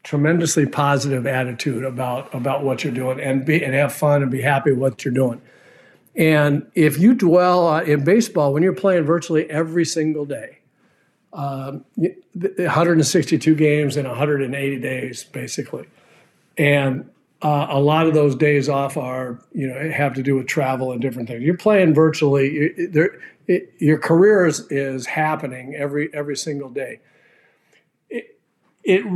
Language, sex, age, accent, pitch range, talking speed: English, male, 50-69, American, 140-170 Hz, 150 wpm